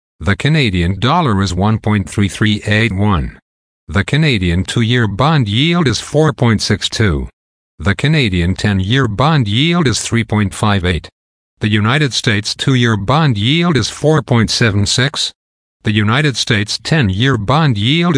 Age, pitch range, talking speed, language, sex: 50-69, 95-125 Hz, 110 wpm, English, male